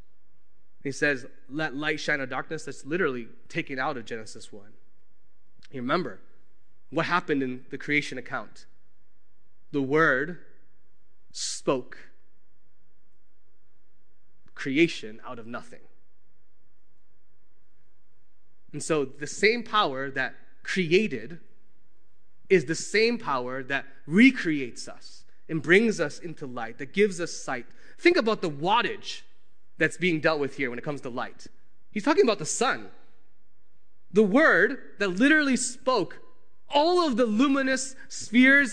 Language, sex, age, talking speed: English, male, 20-39, 125 wpm